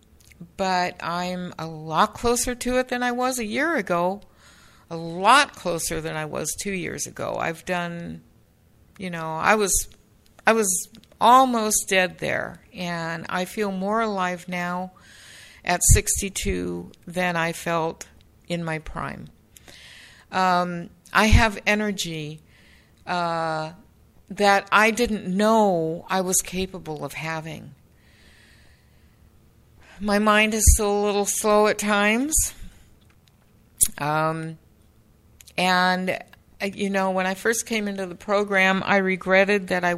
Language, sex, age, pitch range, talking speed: English, female, 60-79, 165-210 Hz, 130 wpm